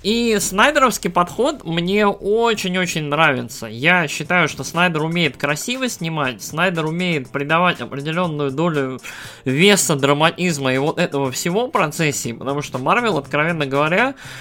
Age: 20-39